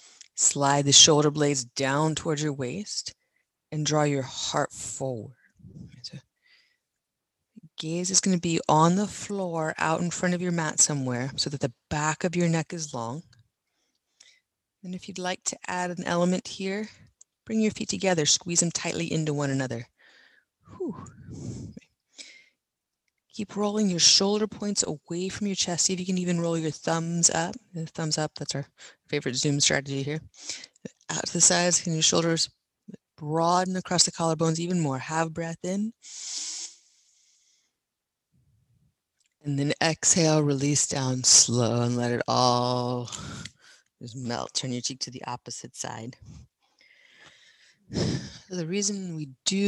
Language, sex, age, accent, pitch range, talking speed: English, female, 30-49, American, 135-180 Hz, 145 wpm